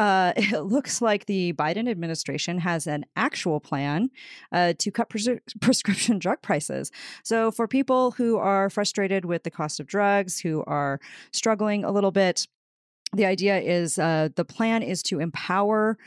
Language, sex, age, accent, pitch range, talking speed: English, female, 30-49, American, 170-210 Hz, 160 wpm